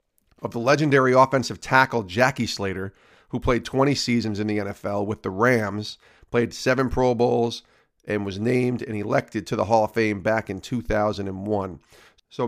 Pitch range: 105-130 Hz